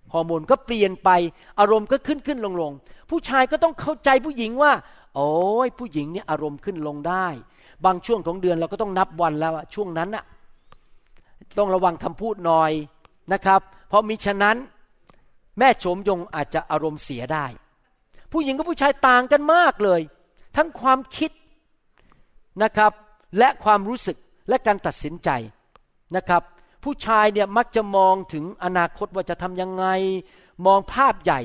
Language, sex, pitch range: Thai, male, 165-225 Hz